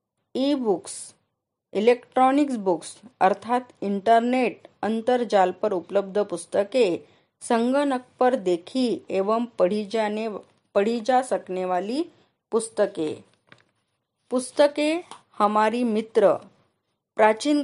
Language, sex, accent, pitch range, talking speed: Marathi, female, native, 195-250 Hz, 85 wpm